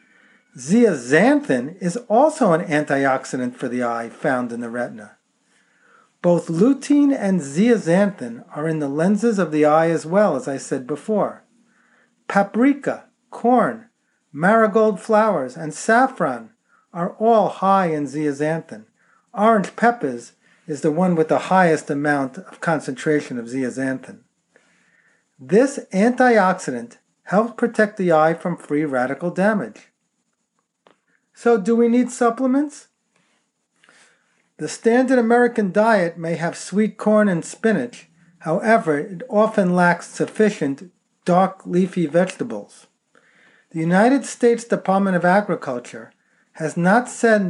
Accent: American